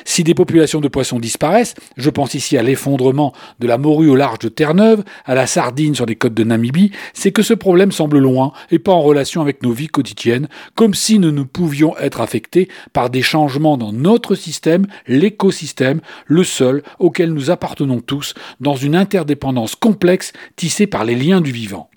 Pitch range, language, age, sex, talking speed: 130-185 Hz, French, 40-59, male, 190 wpm